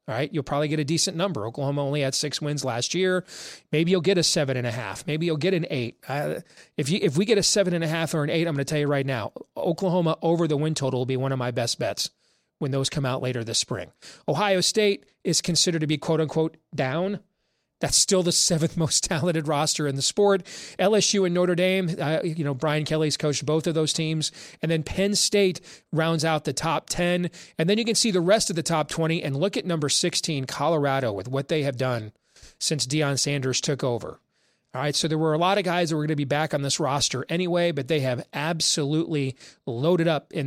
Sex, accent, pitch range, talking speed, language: male, American, 145-175 Hz, 240 wpm, English